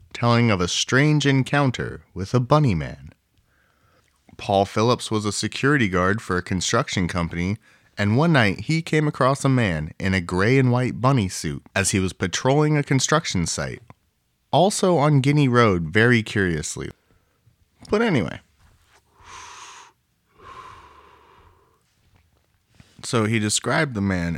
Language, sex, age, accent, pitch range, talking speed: English, male, 30-49, American, 95-130 Hz, 135 wpm